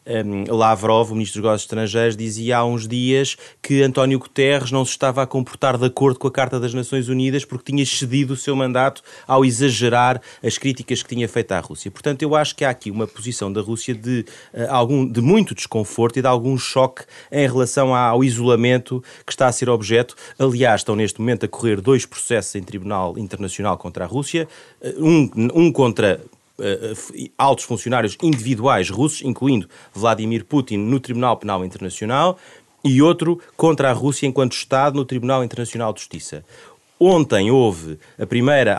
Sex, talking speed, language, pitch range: male, 175 wpm, Portuguese, 115-140 Hz